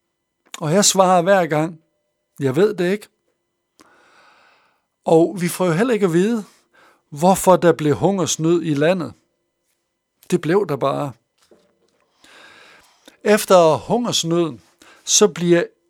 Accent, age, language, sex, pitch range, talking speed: native, 60-79, Danish, male, 150-190 Hz, 115 wpm